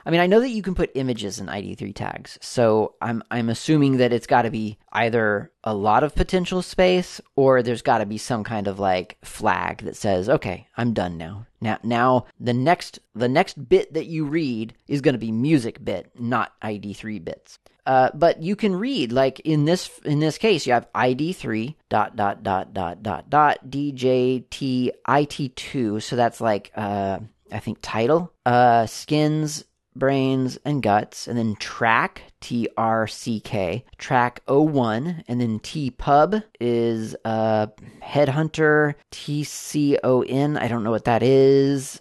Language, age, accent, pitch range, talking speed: English, 30-49, American, 110-150 Hz, 175 wpm